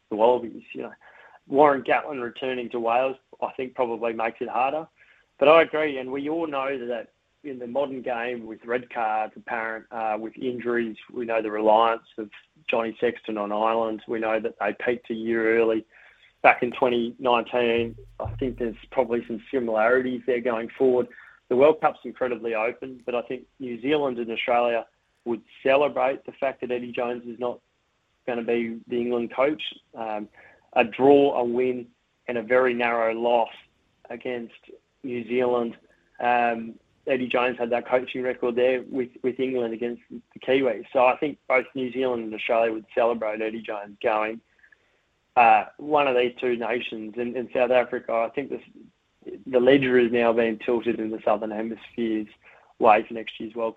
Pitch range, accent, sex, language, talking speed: 115-125 Hz, Australian, male, English, 175 wpm